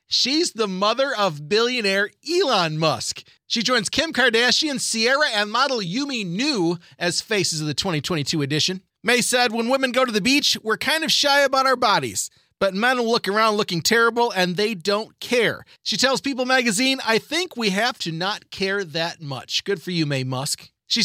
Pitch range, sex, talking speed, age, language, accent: 190-255 Hz, male, 190 wpm, 30-49, English, American